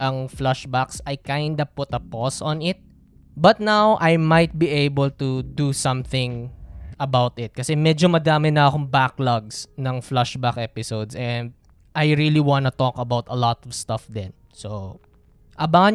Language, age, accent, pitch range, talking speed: Filipino, 20-39, native, 135-180 Hz, 160 wpm